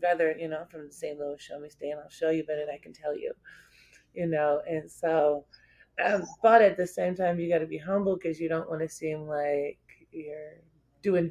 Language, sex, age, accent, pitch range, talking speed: English, female, 30-49, American, 155-185 Hz, 210 wpm